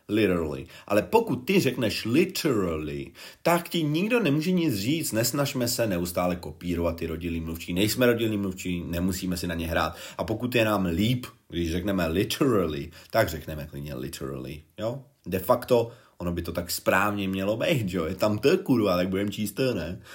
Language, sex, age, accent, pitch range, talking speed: Czech, male, 30-49, native, 85-125 Hz, 175 wpm